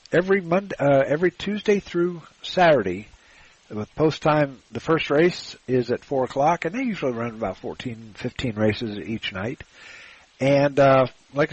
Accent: American